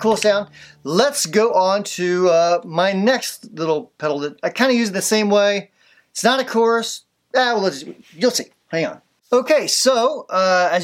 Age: 30-49